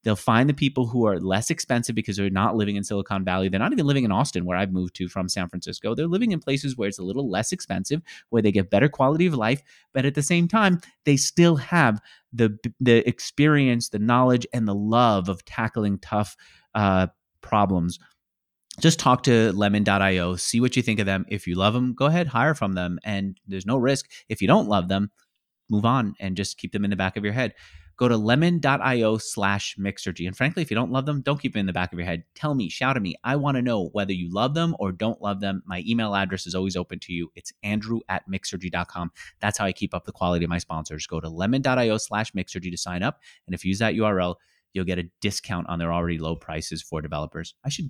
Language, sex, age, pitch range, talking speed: English, male, 30-49, 90-125 Hz, 240 wpm